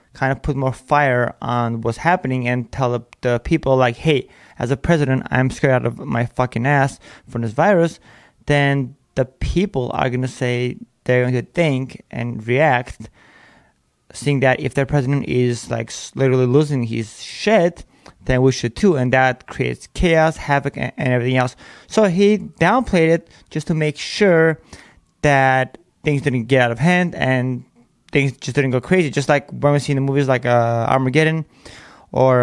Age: 20-39